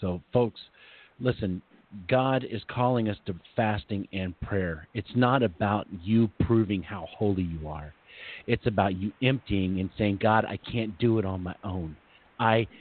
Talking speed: 165 wpm